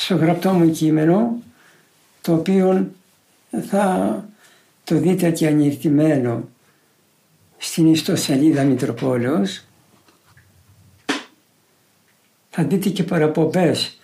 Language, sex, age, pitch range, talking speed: Greek, male, 60-79, 150-205 Hz, 75 wpm